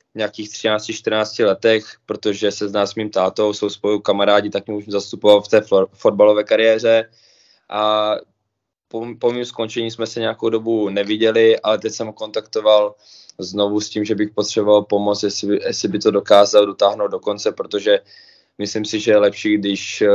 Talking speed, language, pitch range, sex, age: 175 wpm, Czech, 100-105 Hz, male, 20-39